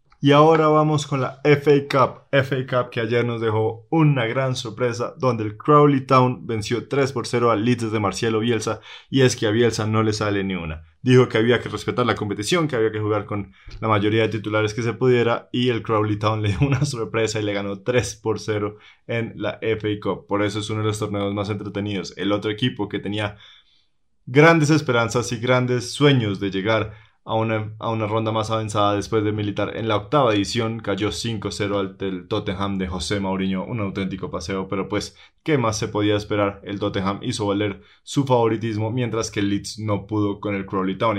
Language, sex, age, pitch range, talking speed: Spanish, male, 20-39, 100-120 Hz, 210 wpm